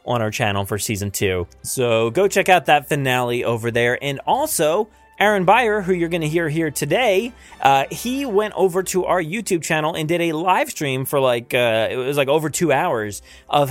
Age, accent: 20-39, American